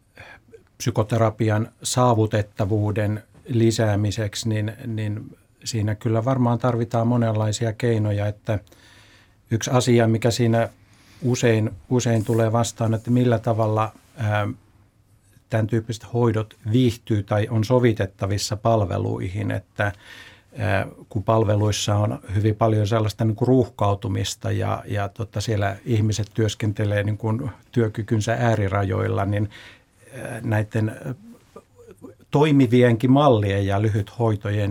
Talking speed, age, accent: 90 wpm, 50-69, native